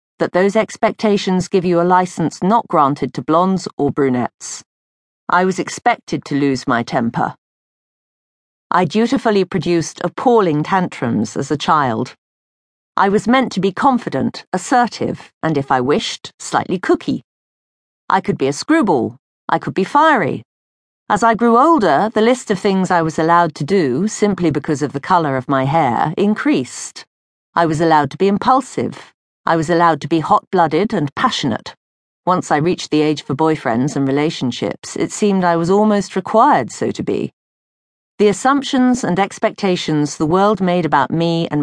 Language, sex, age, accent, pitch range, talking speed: English, female, 40-59, British, 155-215 Hz, 165 wpm